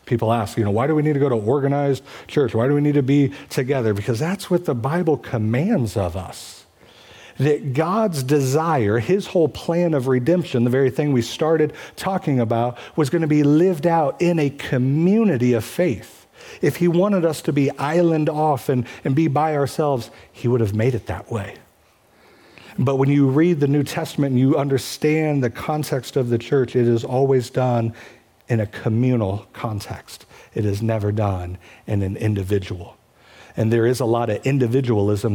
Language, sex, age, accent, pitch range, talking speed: English, male, 50-69, American, 110-145 Hz, 190 wpm